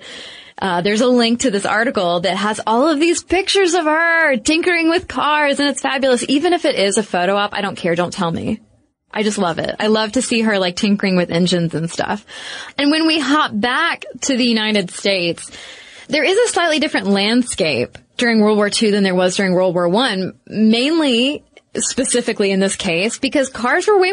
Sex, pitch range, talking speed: female, 190-260 Hz, 210 wpm